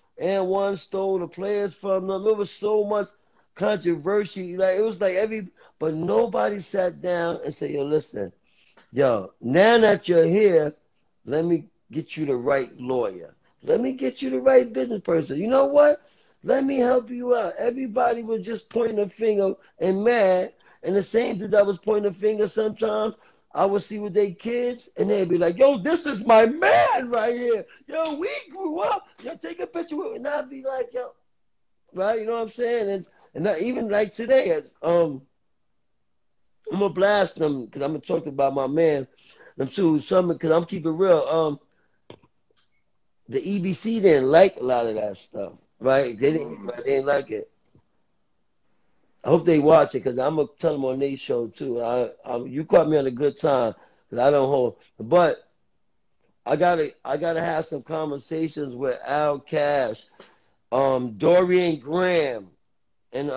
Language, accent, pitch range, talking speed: English, American, 150-220 Hz, 185 wpm